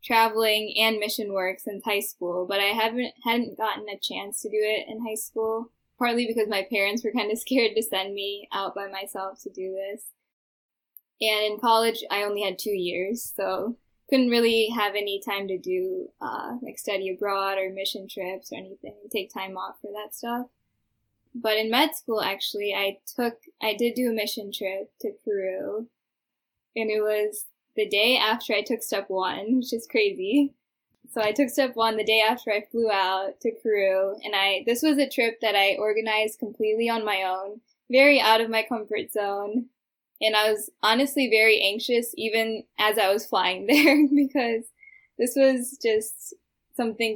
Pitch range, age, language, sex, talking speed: 200-235 Hz, 10-29, English, female, 185 wpm